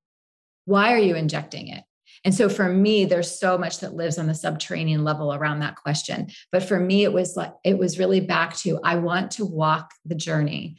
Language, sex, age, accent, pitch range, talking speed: English, female, 30-49, American, 175-215 Hz, 210 wpm